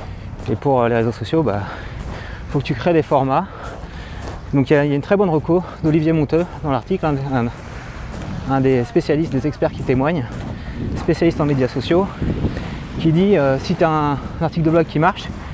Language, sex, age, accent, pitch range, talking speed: French, male, 30-49, French, 125-155 Hz, 190 wpm